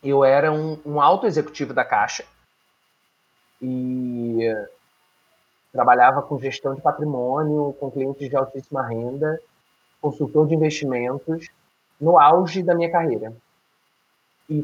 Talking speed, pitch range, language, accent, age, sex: 115 wpm, 150-200 Hz, Portuguese, Brazilian, 30-49, male